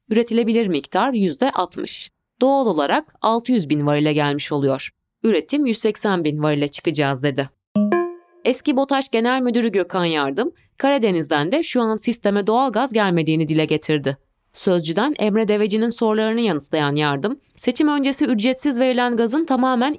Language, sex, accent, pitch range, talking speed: Turkish, female, native, 160-260 Hz, 130 wpm